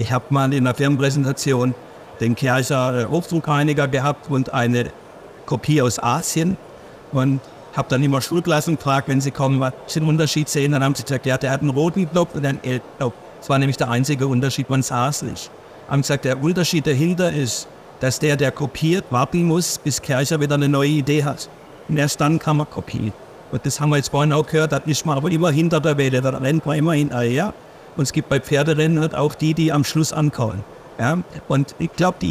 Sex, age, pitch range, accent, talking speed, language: male, 50-69, 140-175 Hz, German, 210 wpm, German